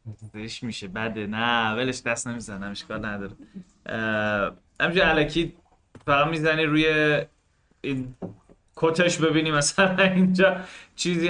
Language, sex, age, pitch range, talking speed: Persian, male, 30-49, 105-150 Hz, 110 wpm